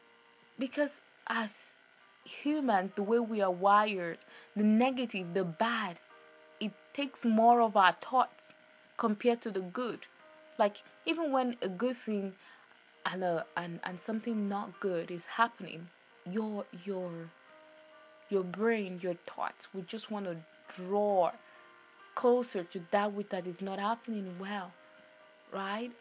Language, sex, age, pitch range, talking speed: English, female, 20-39, 190-230 Hz, 135 wpm